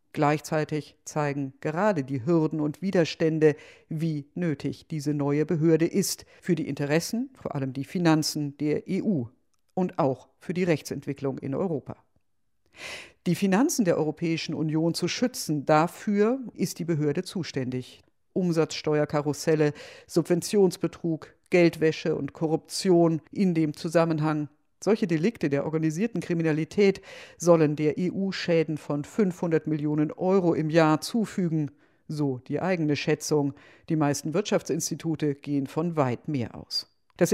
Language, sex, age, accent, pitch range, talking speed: German, female, 50-69, German, 150-180 Hz, 125 wpm